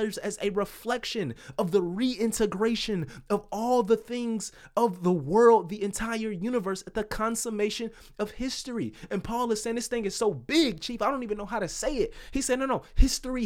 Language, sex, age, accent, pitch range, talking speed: English, male, 20-39, American, 205-245 Hz, 195 wpm